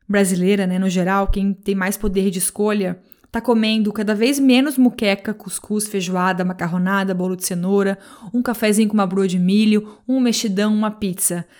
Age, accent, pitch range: 20-39, Brazilian, 195-245 Hz